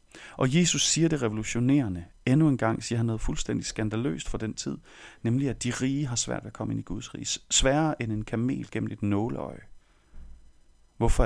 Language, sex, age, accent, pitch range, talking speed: Danish, male, 40-59, native, 85-125 Hz, 190 wpm